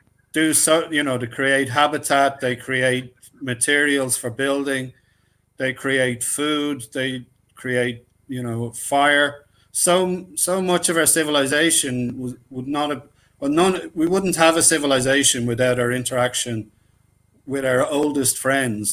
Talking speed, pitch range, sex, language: 140 wpm, 120-145 Hz, male, English